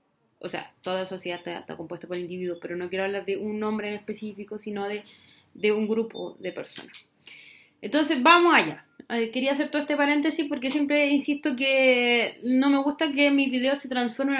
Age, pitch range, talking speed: 20-39, 200-260 Hz, 190 wpm